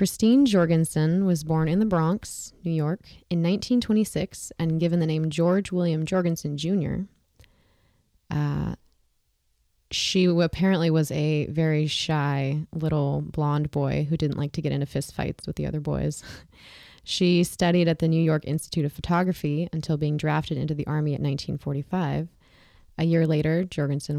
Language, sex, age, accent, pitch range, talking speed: English, female, 20-39, American, 150-180 Hz, 150 wpm